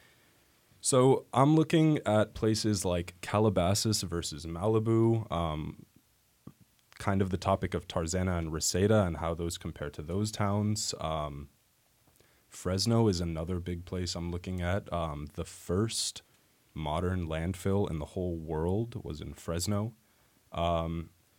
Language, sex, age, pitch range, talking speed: English, male, 20-39, 85-105 Hz, 130 wpm